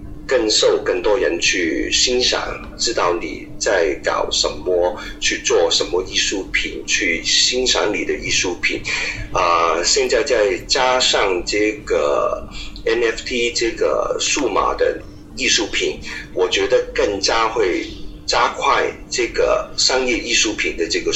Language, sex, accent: Chinese, male, native